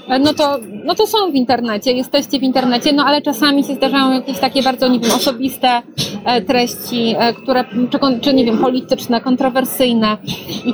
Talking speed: 160 wpm